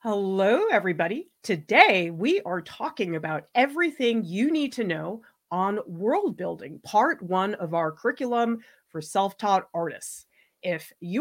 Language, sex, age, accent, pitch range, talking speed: English, female, 40-59, American, 170-240 Hz, 135 wpm